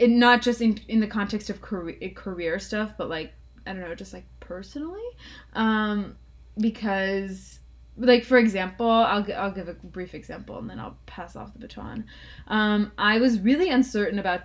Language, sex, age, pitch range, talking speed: English, female, 20-39, 185-225 Hz, 180 wpm